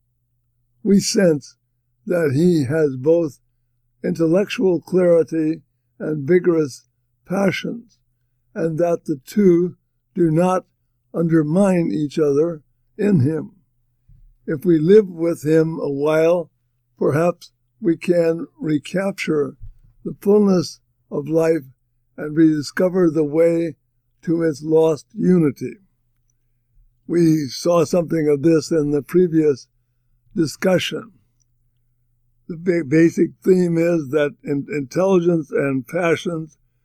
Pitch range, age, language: 120-170 Hz, 60-79, English